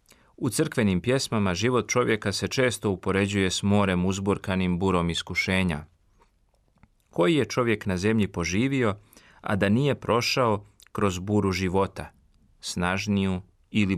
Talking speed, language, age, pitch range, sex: 120 wpm, Croatian, 40-59, 95-115 Hz, male